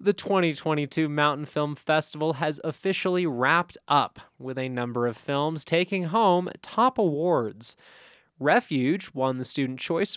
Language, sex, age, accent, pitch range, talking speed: English, male, 20-39, American, 135-170 Hz, 135 wpm